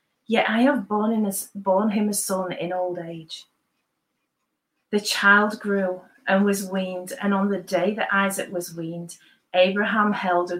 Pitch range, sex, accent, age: 180-220 Hz, female, British, 30-49